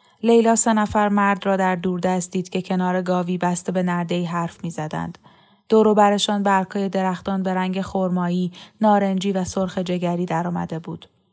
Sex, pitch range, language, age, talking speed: female, 185-210 Hz, Persian, 10-29, 160 wpm